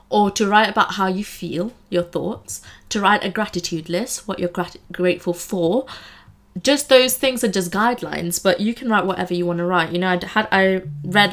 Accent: British